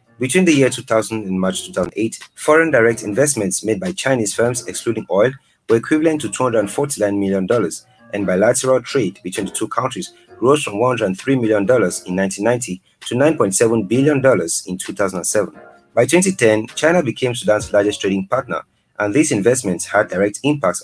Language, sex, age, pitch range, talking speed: English, male, 30-49, 100-135 Hz, 155 wpm